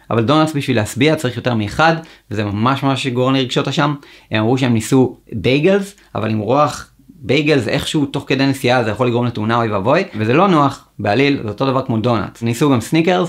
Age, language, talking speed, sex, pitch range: 30-49, Hebrew, 205 wpm, male, 115-155 Hz